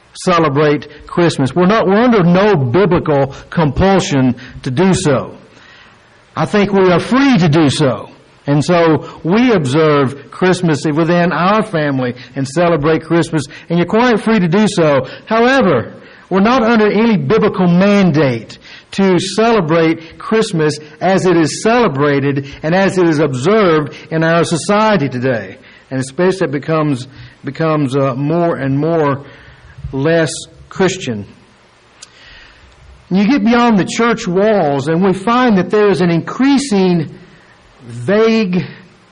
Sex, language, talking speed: male, English, 135 wpm